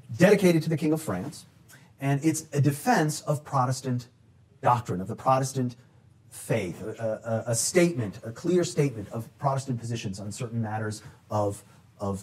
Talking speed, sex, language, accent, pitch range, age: 155 wpm, male, English, American, 110-150 Hz, 40-59